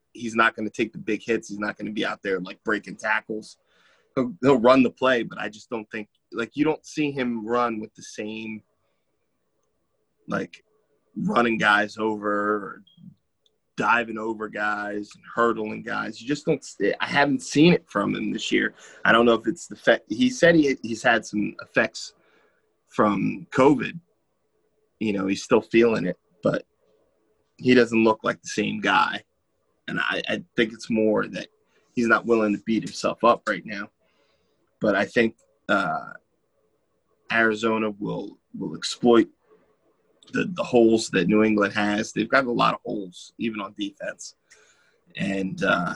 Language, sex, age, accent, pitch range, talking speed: English, male, 20-39, American, 105-120 Hz, 175 wpm